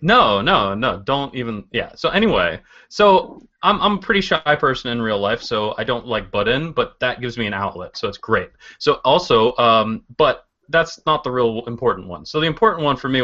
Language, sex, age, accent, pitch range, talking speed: English, male, 30-49, American, 115-150 Hz, 220 wpm